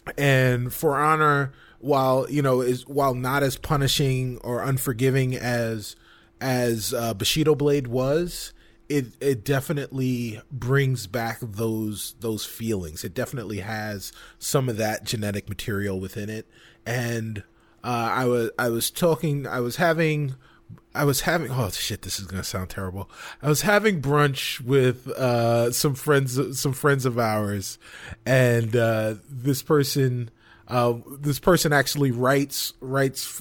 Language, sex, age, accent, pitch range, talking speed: English, male, 20-39, American, 115-140 Hz, 145 wpm